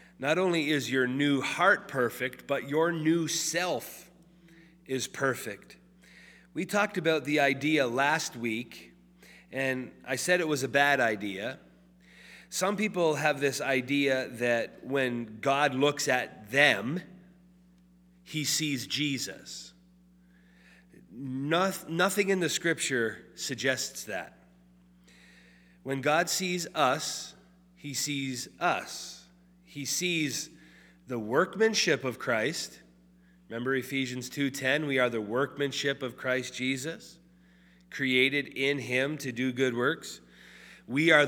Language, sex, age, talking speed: English, male, 40-59, 115 wpm